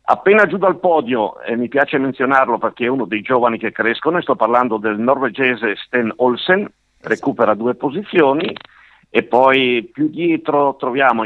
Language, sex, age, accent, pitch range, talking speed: Italian, male, 50-69, native, 120-150 Hz, 155 wpm